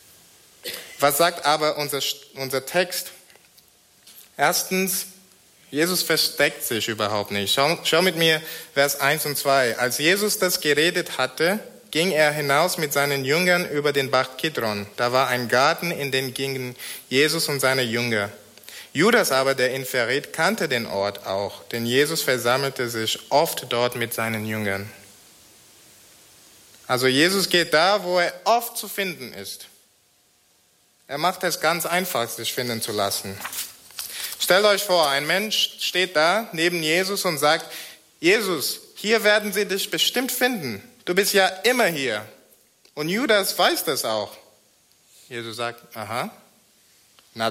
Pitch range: 125-180 Hz